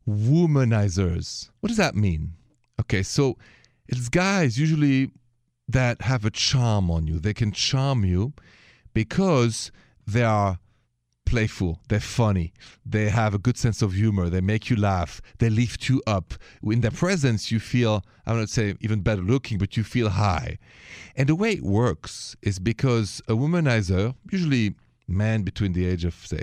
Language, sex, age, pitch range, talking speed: English, male, 40-59, 95-125 Hz, 170 wpm